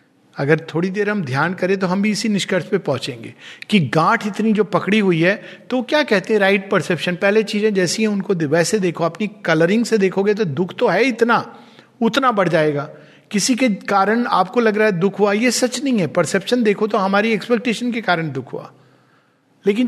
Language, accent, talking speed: Hindi, native, 205 wpm